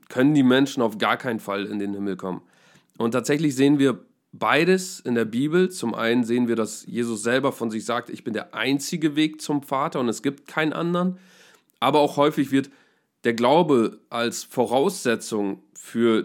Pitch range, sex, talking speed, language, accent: 115-150 Hz, male, 185 wpm, German, German